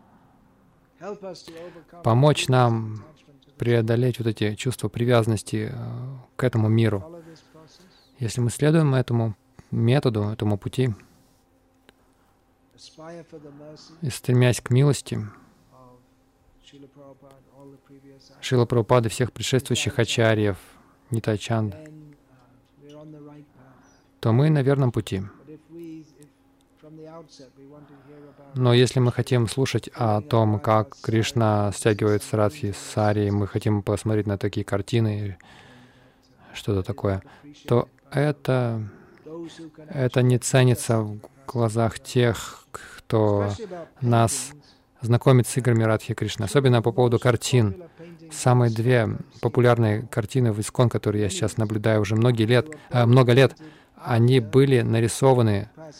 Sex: male